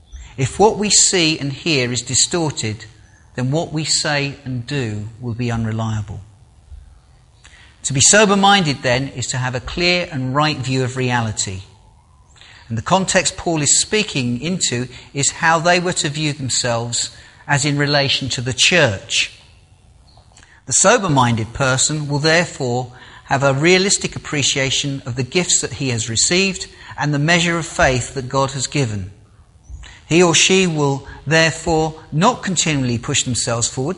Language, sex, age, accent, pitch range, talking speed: English, male, 40-59, British, 120-165 Hz, 150 wpm